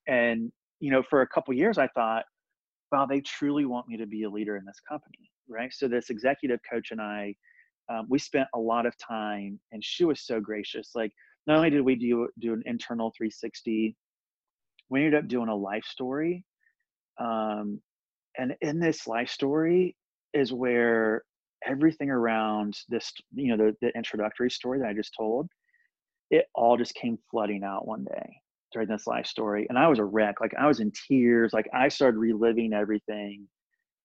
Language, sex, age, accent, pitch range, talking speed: English, male, 30-49, American, 110-135 Hz, 185 wpm